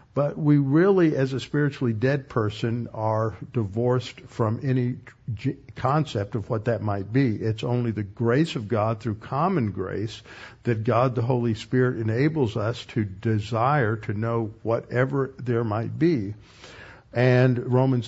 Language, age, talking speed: English, 50-69, 145 wpm